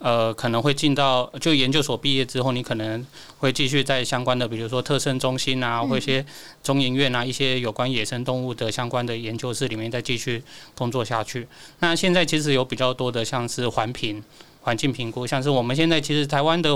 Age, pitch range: 20-39, 120-145 Hz